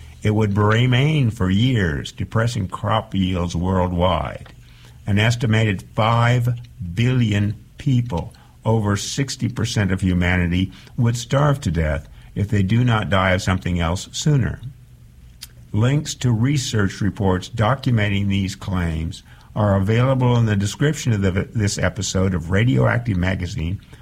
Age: 60-79